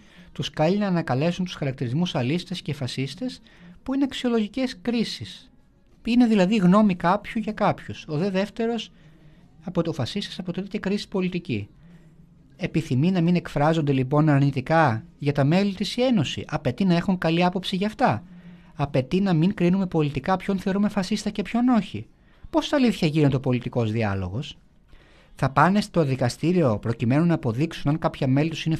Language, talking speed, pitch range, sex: Greek, 155 wpm, 150-200 Hz, male